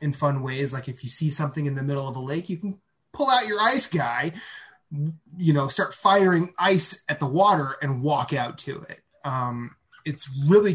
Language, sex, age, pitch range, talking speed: English, male, 20-39, 135-155 Hz, 205 wpm